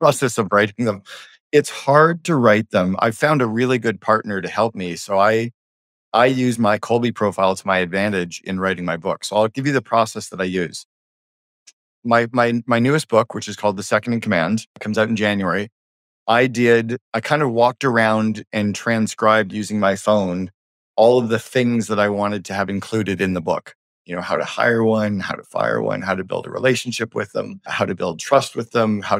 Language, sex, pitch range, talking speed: English, male, 100-120 Hz, 220 wpm